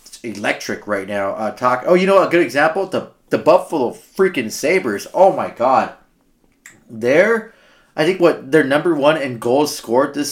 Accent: American